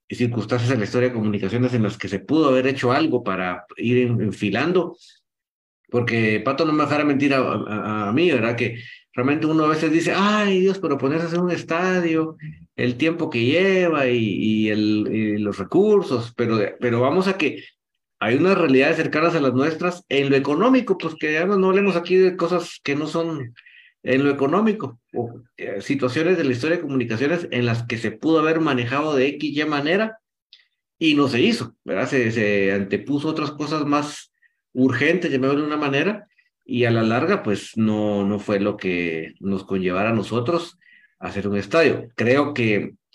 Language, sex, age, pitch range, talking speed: Spanish, male, 50-69, 110-155 Hz, 185 wpm